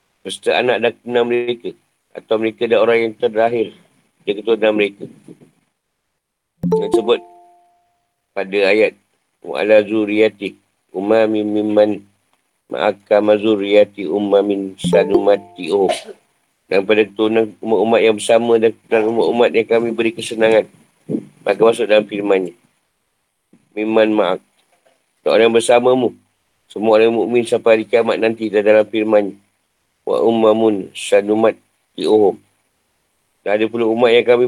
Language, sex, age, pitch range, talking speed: Malay, male, 50-69, 105-125 Hz, 115 wpm